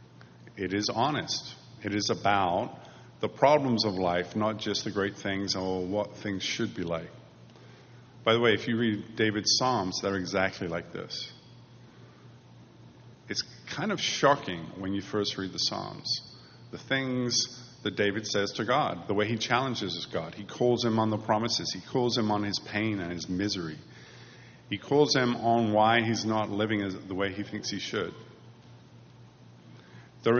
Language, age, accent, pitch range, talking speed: English, 50-69, American, 95-120 Hz, 170 wpm